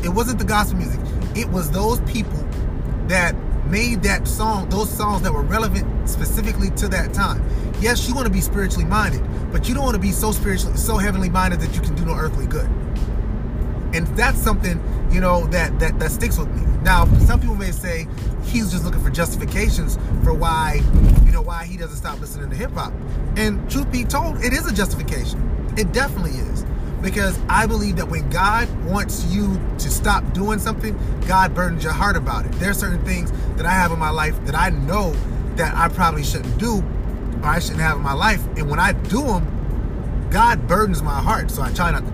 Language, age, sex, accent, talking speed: English, 30-49, male, American, 210 wpm